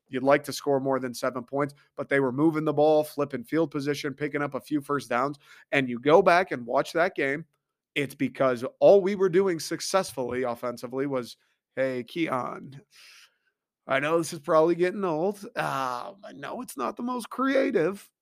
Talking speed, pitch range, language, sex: 190 wpm, 130-160 Hz, English, male